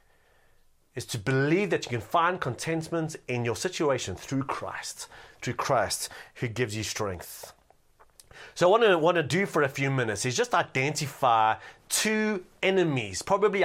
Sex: male